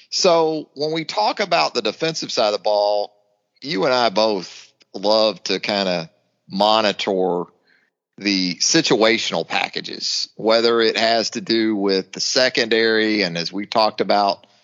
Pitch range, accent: 105-120 Hz, American